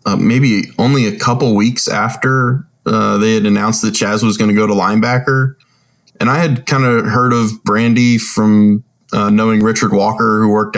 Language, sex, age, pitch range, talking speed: English, male, 20-39, 105-130 Hz, 190 wpm